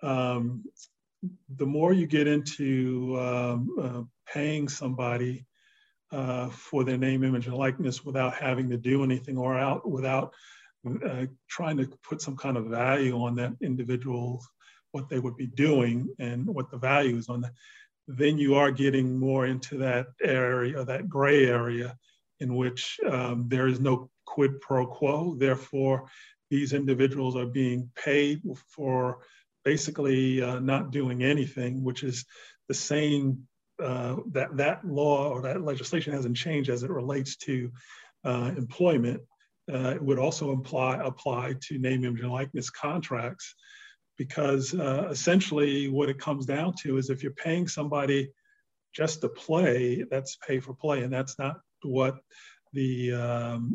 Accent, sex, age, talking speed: American, male, 40-59, 155 wpm